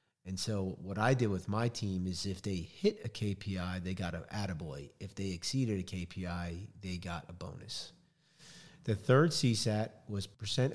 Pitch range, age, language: 95-115 Hz, 40-59, English